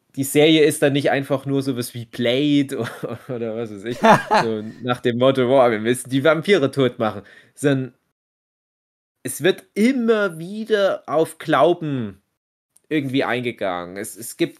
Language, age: German, 30-49